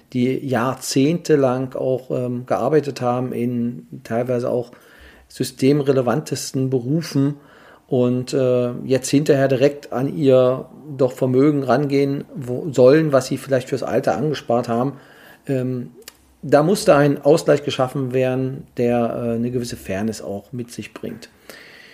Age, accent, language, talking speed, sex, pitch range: 40-59, German, German, 125 wpm, male, 120-140 Hz